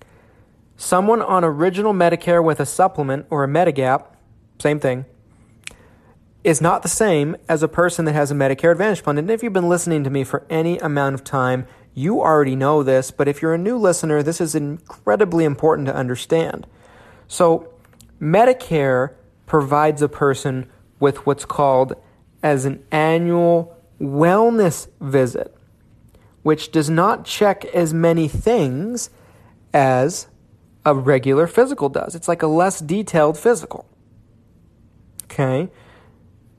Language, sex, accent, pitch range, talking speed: English, male, American, 130-170 Hz, 140 wpm